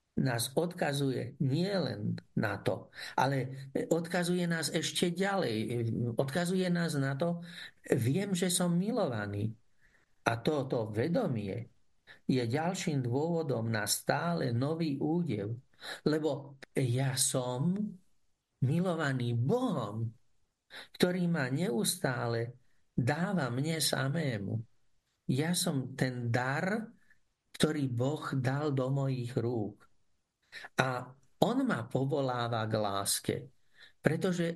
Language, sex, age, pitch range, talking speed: Slovak, male, 50-69, 125-175 Hz, 95 wpm